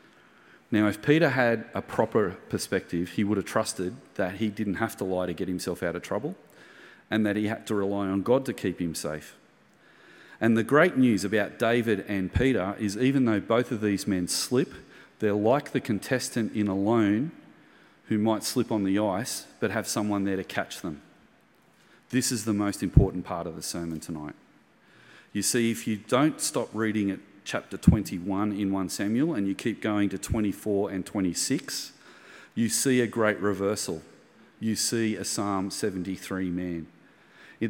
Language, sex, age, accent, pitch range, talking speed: English, male, 40-59, Australian, 95-115 Hz, 180 wpm